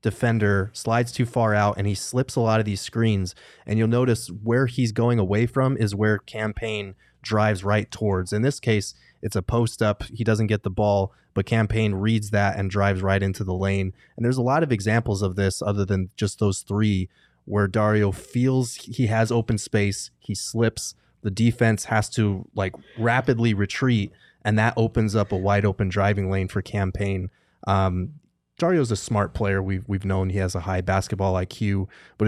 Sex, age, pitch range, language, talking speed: male, 20-39, 95-115 Hz, English, 195 wpm